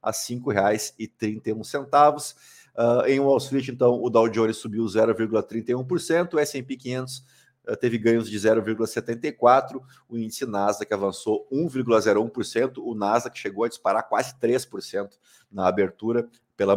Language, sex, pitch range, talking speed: Portuguese, male, 110-135 Hz, 120 wpm